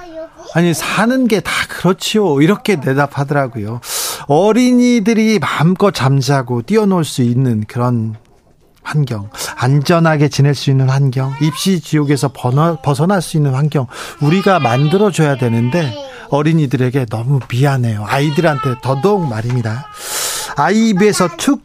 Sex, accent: male, native